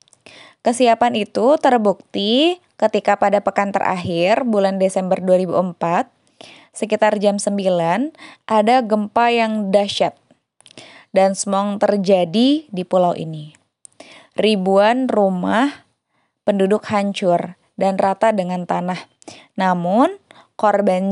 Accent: native